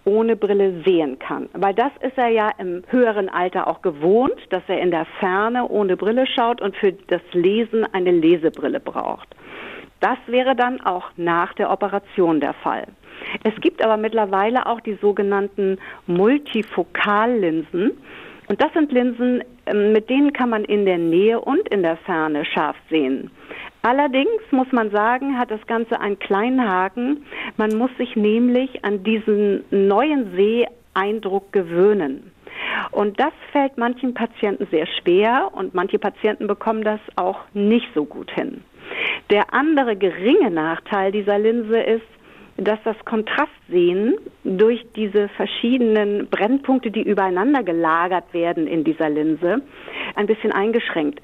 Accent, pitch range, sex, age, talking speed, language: German, 190-240 Hz, female, 50-69, 145 wpm, German